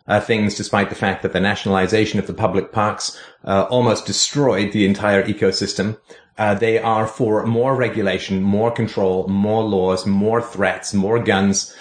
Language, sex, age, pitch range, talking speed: English, male, 30-49, 100-115 Hz, 165 wpm